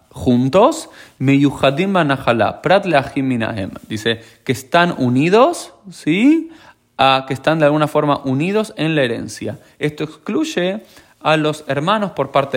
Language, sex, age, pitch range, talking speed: Spanish, male, 20-39, 120-155 Hz, 135 wpm